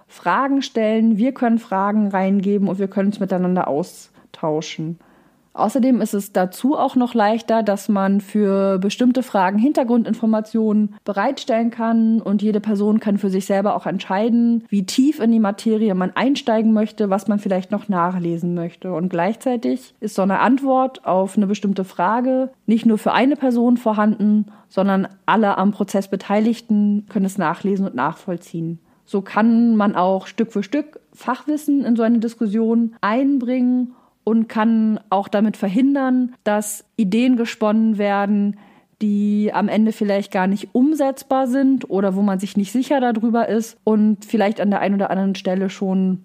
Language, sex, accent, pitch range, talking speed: German, female, German, 195-230 Hz, 160 wpm